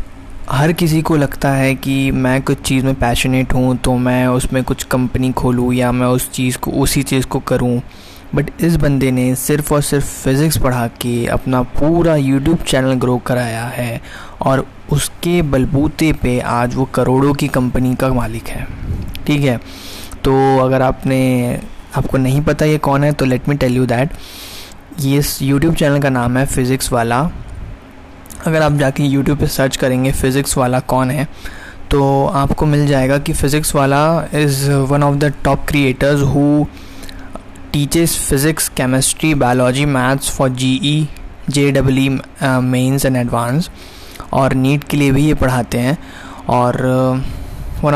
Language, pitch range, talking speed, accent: Hindi, 125-145 Hz, 160 wpm, native